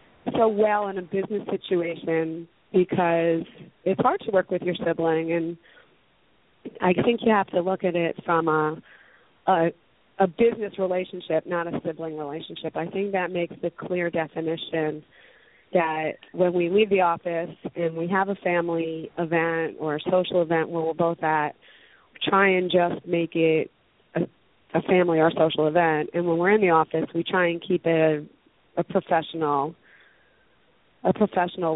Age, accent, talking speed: 30-49, American, 170 wpm